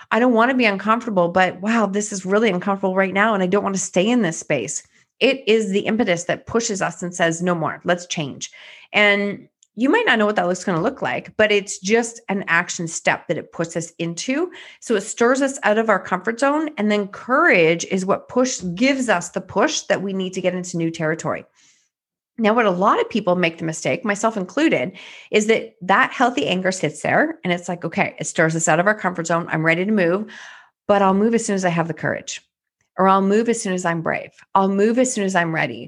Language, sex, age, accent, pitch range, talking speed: English, female, 30-49, American, 175-225 Hz, 245 wpm